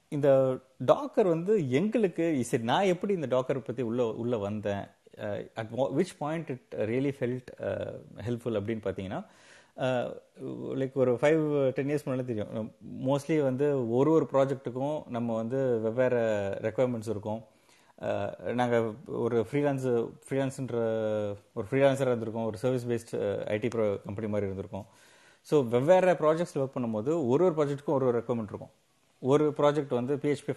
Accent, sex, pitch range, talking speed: native, male, 110-140 Hz, 135 wpm